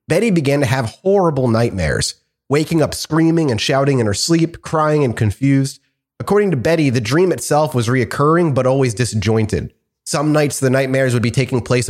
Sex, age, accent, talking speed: male, 30-49, American, 180 wpm